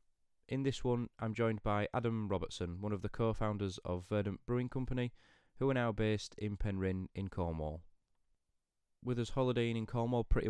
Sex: male